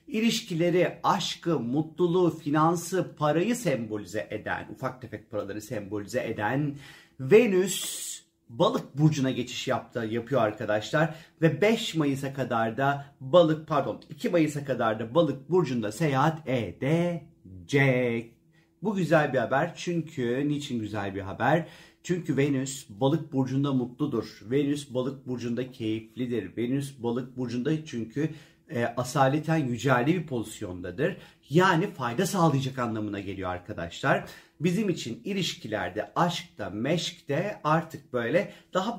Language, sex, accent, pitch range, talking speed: Turkish, male, native, 120-165 Hz, 115 wpm